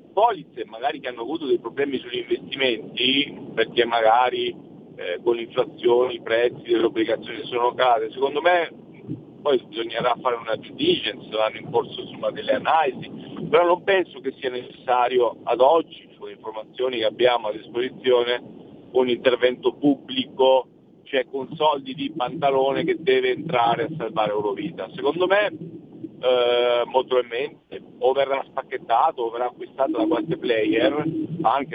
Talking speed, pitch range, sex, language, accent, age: 145 wpm, 120-170 Hz, male, Italian, native, 50-69